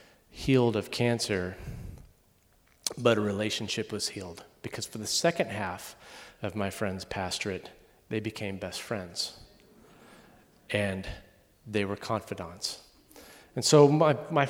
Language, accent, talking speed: English, American, 120 wpm